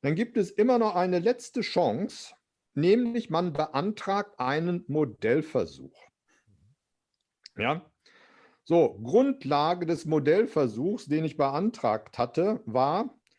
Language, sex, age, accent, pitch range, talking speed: German, male, 50-69, German, 140-185 Hz, 95 wpm